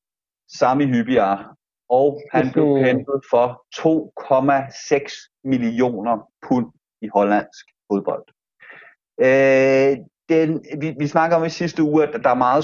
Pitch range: 120-150 Hz